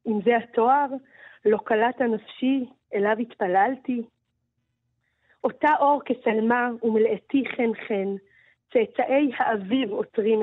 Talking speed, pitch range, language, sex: 90 wpm, 215-270 Hz, Hebrew, female